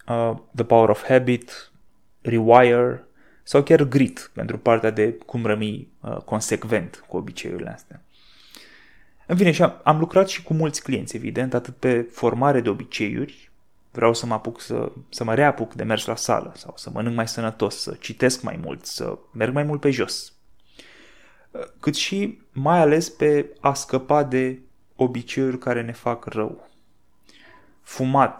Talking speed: 160 wpm